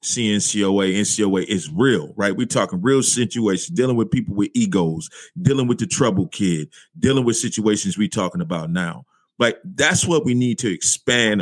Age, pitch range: 30-49, 110-160 Hz